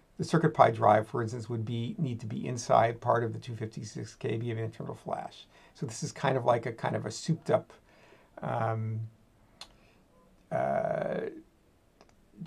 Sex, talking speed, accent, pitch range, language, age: male, 150 wpm, American, 115-150 Hz, English, 50-69